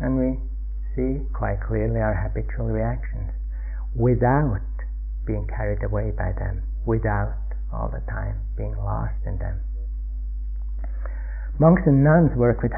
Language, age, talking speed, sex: English, 60-79, 125 wpm, male